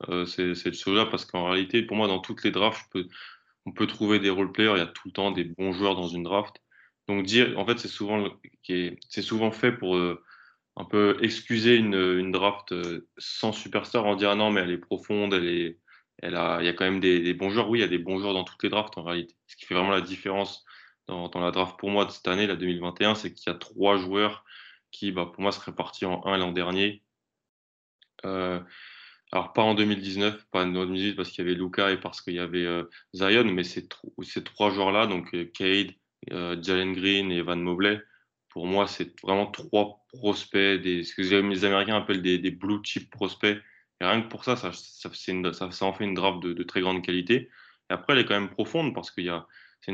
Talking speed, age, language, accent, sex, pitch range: 245 wpm, 20-39, French, French, male, 90-105 Hz